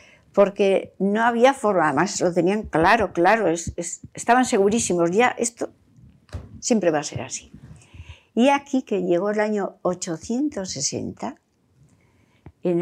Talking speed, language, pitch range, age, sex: 125 wpm, Spanish, 170-230 Hz, 60-79, female